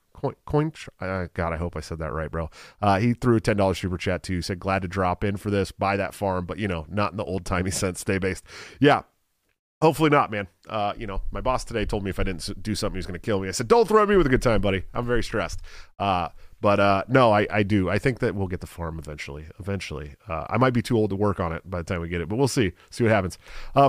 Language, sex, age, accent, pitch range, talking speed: English, male, 30-49, American, 95-120 Hz, 295 wpm